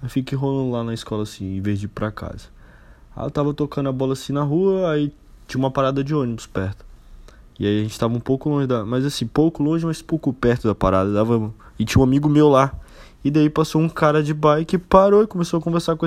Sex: male